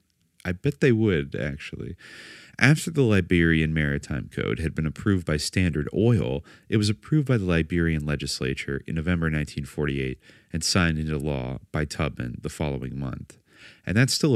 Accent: American